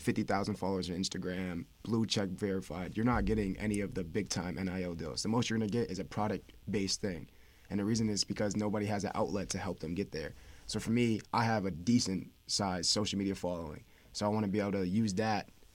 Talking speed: 230 wpm